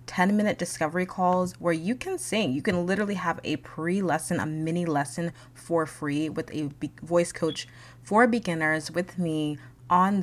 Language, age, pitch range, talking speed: English, 20-39, 150-185 Hz, 160 wpm